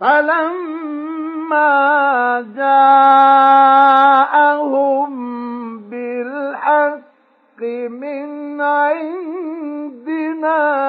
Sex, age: male, 50-69